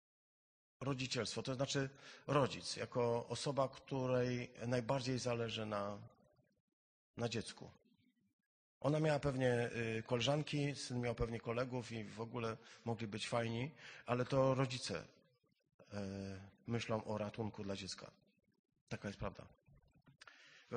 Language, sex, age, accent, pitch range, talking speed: Polish, male, 40-59, native, 115-145 Hz, 110 wpm